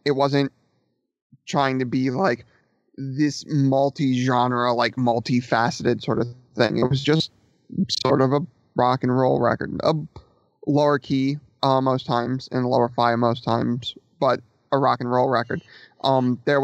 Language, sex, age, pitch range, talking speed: English, male, 30-49, 120-140 Hz, 150 wpm